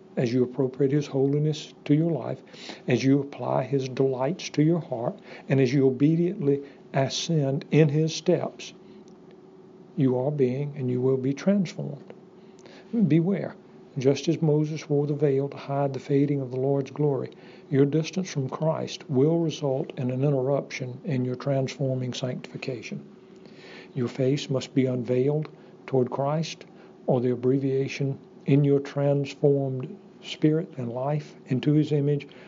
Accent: American